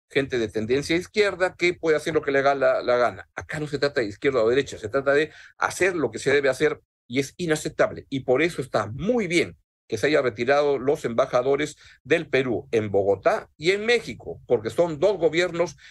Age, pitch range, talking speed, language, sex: 50-69, 130-165 Hz, 220 wpm, Spanish, male